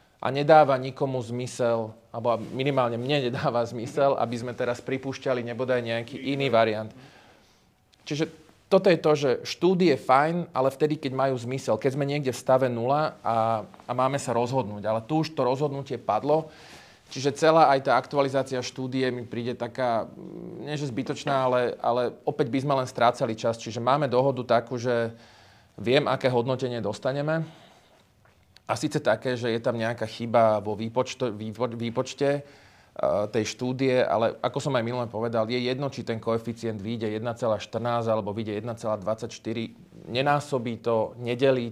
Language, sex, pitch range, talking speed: English, male, 115-135 Hz, 155 wpm